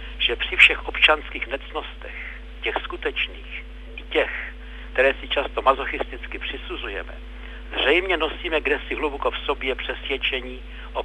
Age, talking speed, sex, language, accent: 60-79, 120 wpm, male, Czech, native